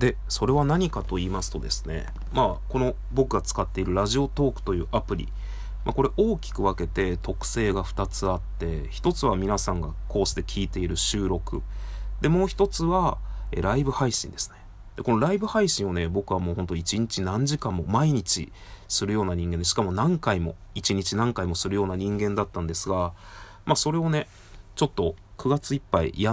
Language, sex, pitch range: Japanese, male, 95-125 Hz